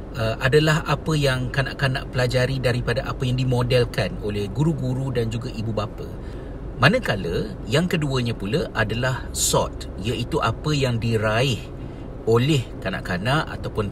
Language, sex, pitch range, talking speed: Malay, male, 115-140 Hz, 125 wpm